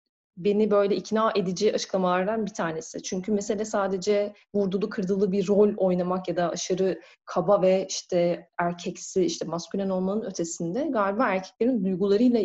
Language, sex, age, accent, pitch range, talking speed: Turkish, female, 30-49, native, 175-215 Hz, 140 wpm